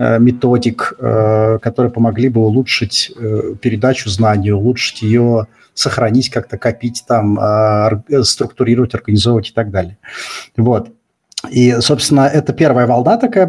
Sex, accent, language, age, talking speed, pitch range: male, native, Russian, 30-49, 110 wpm, 110-130 Hz